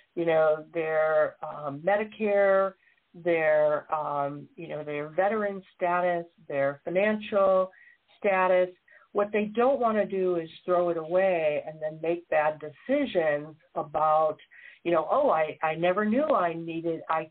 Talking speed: 140 wpm